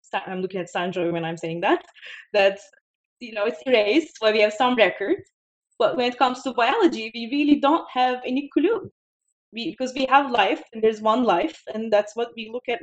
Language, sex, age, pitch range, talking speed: English, female, 20-39, 190-255 Hz, 220 wpm